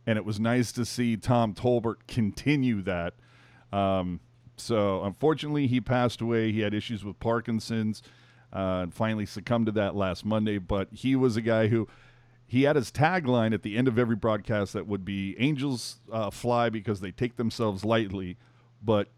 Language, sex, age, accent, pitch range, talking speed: English, male, 40-59, American, 110-130 Hz, 180 wpm